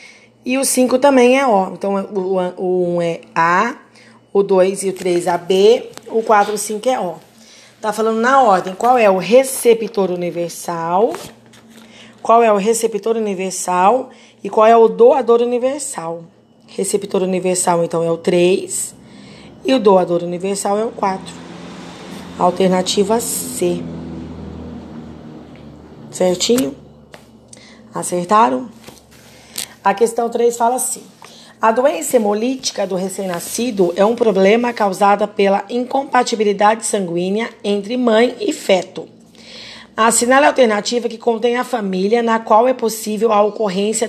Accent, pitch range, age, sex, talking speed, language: Brazilian, 185-235 Hz, 20-39, female, 130 wpm, Portuguese